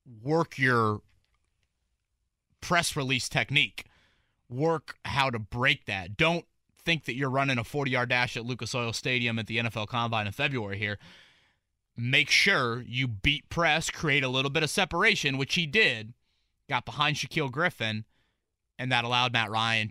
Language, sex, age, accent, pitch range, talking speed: English, male, 30-49, American, 105-150 Hz, 155 wpm